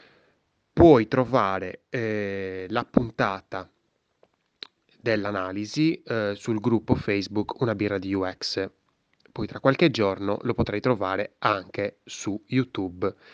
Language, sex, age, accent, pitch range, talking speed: Italian, male, 20-39, native, 100-130 Hz, 105 wpm